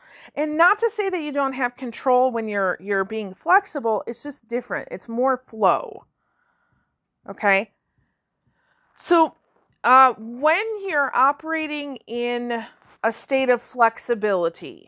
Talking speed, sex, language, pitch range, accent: 125 wpm, female, English, 205-275 Hz, American